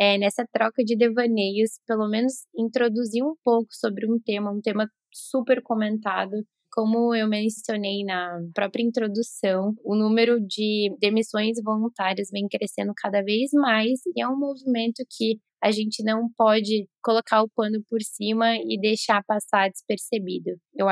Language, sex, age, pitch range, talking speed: Portuguese, female, 10-29, 205-235 Hz, 150 wpm